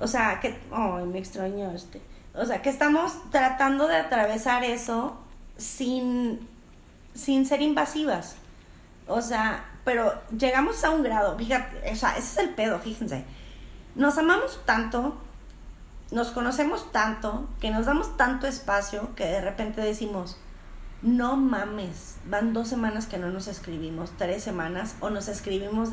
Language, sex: Spanish, female